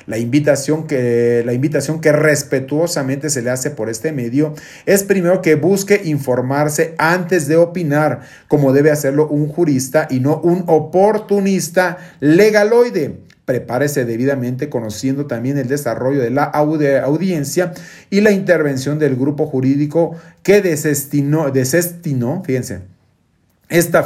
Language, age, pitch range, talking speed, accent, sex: Spanish, 40-59, 130-155 Hz, 125 wpm, Mexican, male